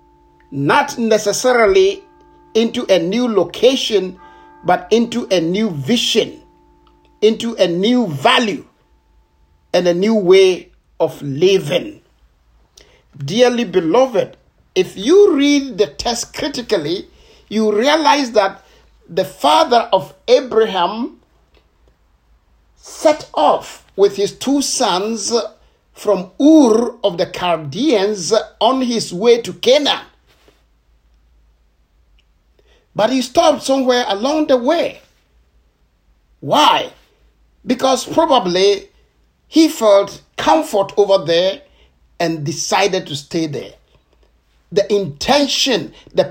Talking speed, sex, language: 95 wpm, male, English